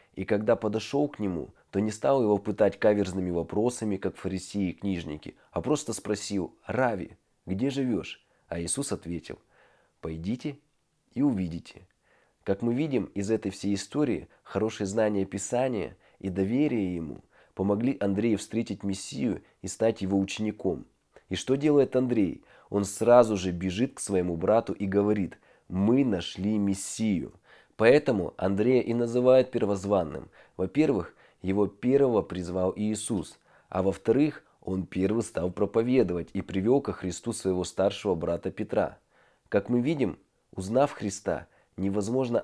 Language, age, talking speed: Russian, 20-39, 135 wpm